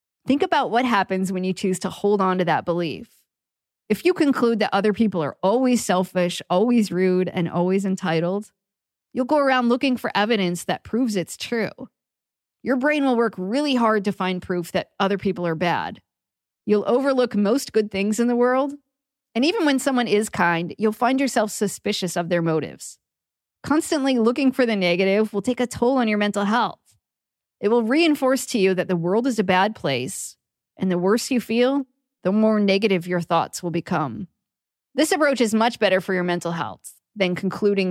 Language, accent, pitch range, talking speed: English, American, 180-240 Hz, 190 wpm